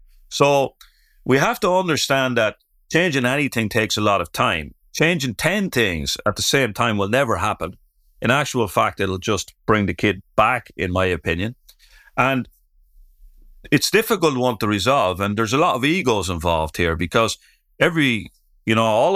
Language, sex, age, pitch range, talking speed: English, male, 40-59, 85-125 Hz, 170 wpm